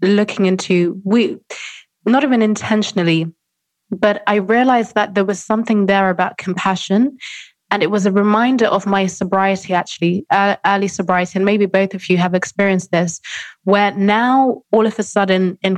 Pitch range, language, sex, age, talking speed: 180-205 Hz, English, female, 20-39, 165 wpm